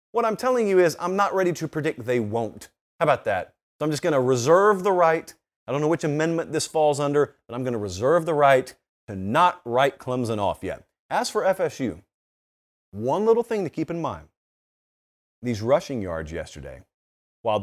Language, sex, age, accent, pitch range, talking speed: English, male, 30-49, American, 110-165 Hz, 200 wpm